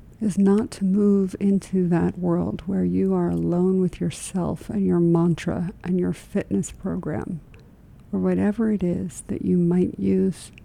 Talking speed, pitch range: 160 wpm, 170-195 Hz